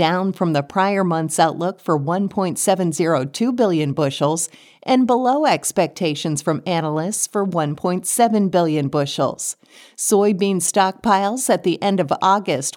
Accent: American